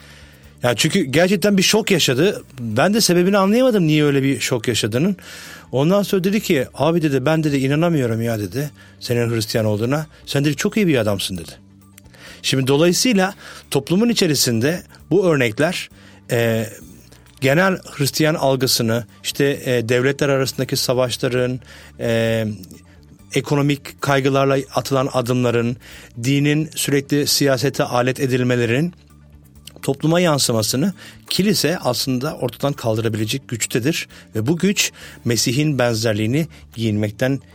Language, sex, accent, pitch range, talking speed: Turkish, male, native, 115-150 Hz, 115 wpm